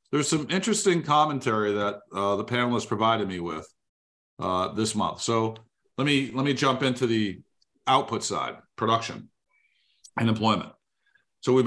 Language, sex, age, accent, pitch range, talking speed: English, male, 50-69, American, 105-130 Hz, 150 wpm